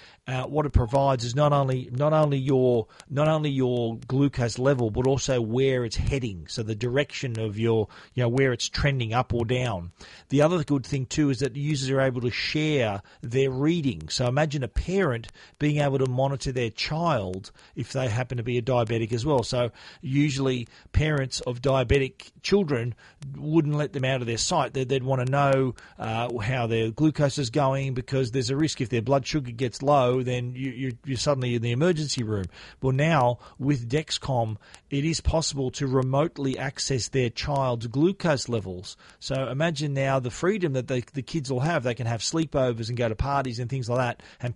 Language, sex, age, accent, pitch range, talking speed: English, male, 40-59, Australian, 120-140 Hz, 200 wpm